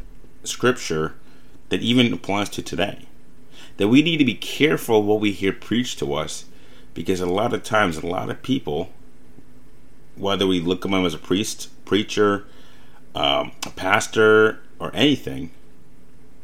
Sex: male